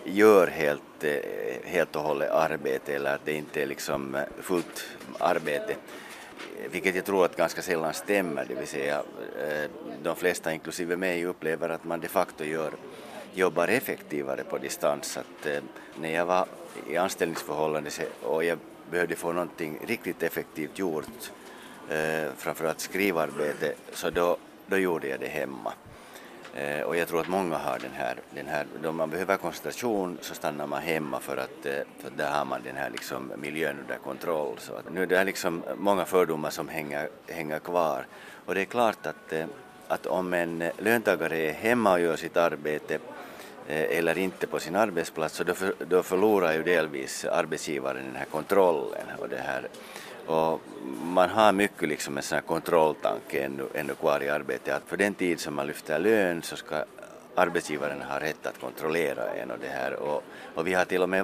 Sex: male